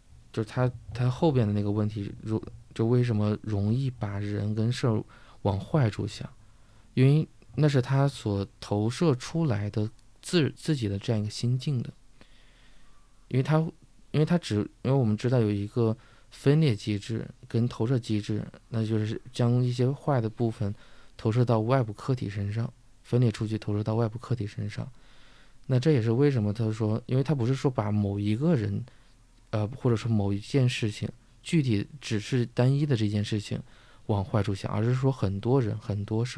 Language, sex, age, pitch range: Chinese, male, 20-39, 105-130 Hz